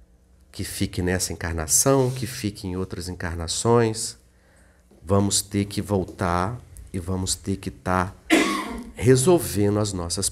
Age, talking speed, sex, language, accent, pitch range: 50-69, 120 wpm, male, Portuguese, Brazilian, 85-105 Hz